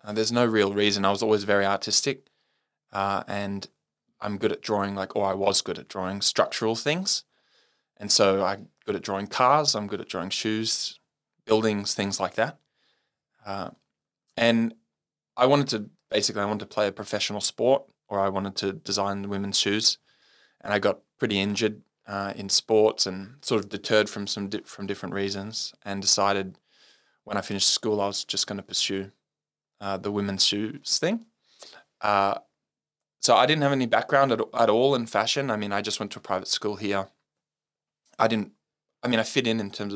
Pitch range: 100-110 Hz